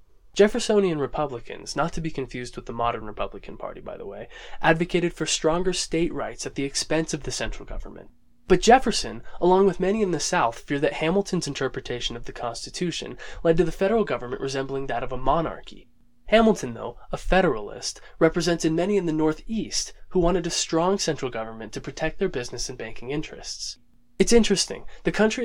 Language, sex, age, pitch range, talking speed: English, male, 20-39, 125-185 Hz, 180 wpm